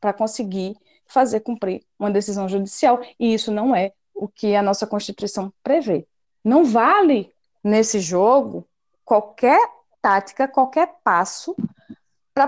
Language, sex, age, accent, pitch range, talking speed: Portuguese, female, 20-39, Brazilian, 200-285 Hz, 125 wpm